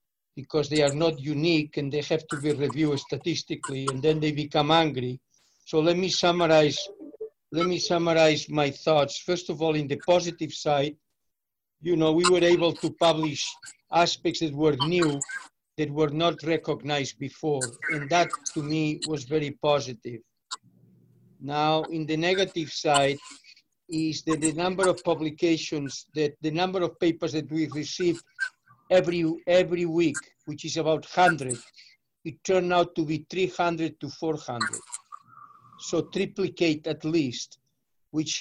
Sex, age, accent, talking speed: male, 60-79, Spanish, 150 wpm